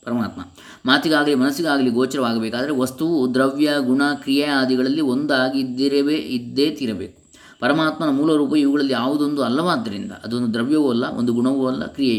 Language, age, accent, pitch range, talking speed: English, 20-39, Indian, 110-150 Hz, 50 wpm